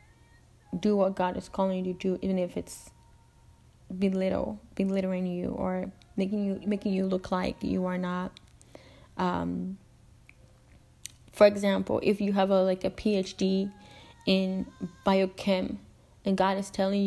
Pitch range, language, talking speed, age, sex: 185-205 Hz, English, 140 wpm, 10-29, female